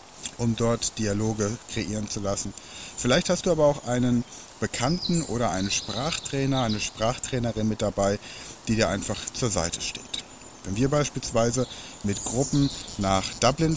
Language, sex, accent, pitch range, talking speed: German, male, German, 100-130 Hz, 145 wpm